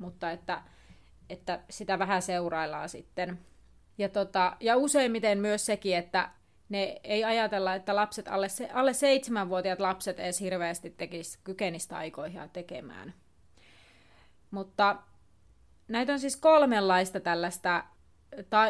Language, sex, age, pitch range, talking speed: Finnish, female, 30-49, 185-215 Hz, 120 wpm